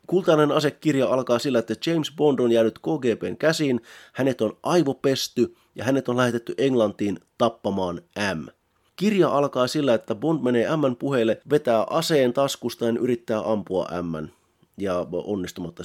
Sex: male